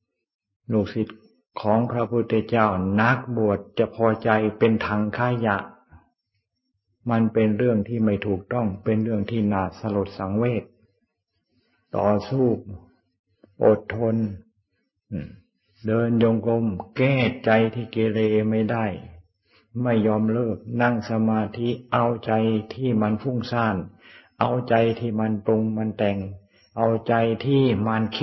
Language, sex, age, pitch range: Thai, male, 60-79, 105-120 Hz